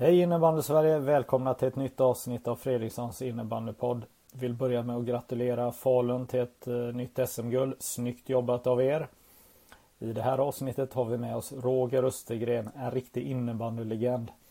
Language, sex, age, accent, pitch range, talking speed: Swedish, male, 30-49, native, 115-130 Hz, 165 wpm